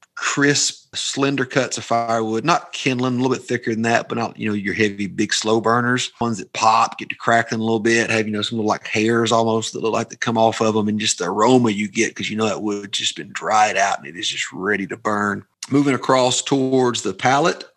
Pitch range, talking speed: 105-130 Hz, 250 wpm